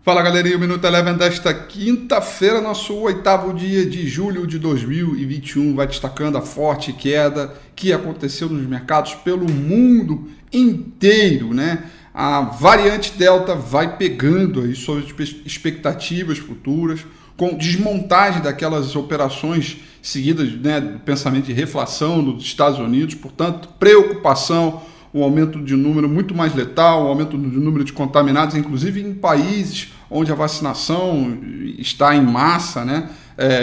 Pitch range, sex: 145-175 Hz, male